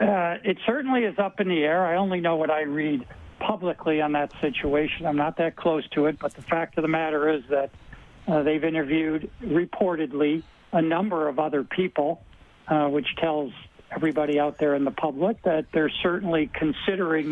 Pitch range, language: 145-170 Hz, English